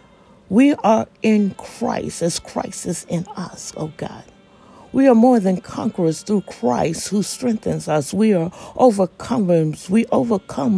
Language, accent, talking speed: English, American, 150 wpm